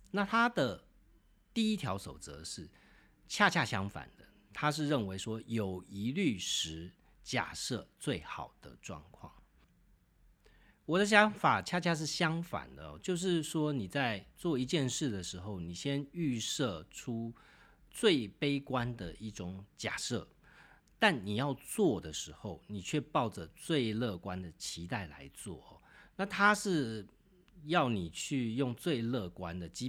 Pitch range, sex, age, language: 90-145 Hz, male, 40-59, Chinese